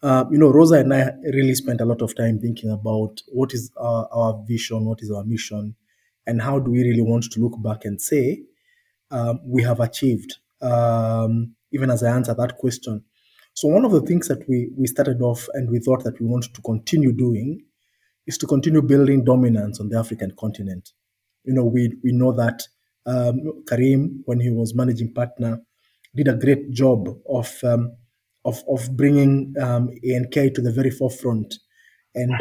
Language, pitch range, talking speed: English, 120-140 Hz, 190 wpm